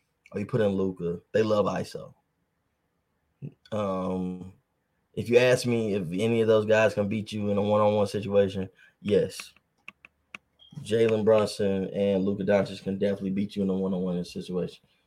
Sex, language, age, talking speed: male, English, 20-39, 155 wpm